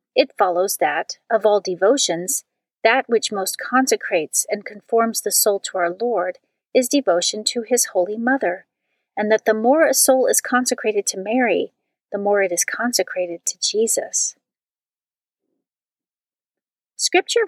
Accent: American